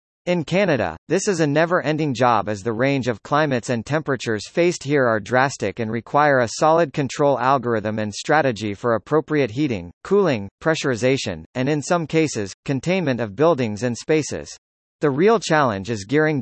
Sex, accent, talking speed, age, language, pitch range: male, American, 165 wpm, 40-59, English, 115-150 Hz